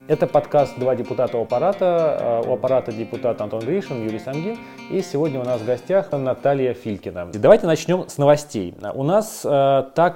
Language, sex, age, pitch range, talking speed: Russian, male, 20-39, 130-180 Hz, 160 wpm